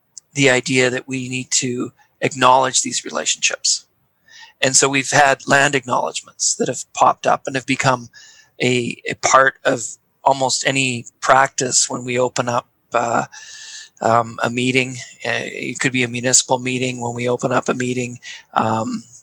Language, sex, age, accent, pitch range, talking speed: English, male, 40-59, American, 125-140 Hz, 155 wpm